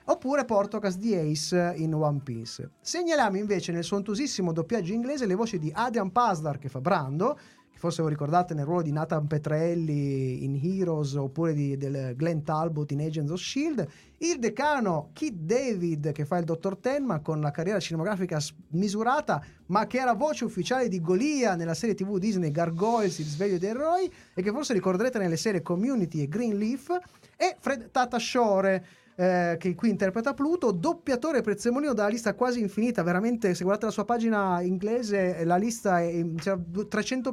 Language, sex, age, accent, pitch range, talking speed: Italian, male, 30-49, native, 165-235 Hz, 175 wpm